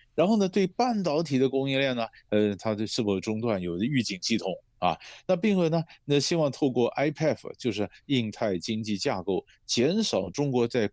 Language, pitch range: Chinese, 100-150 Hz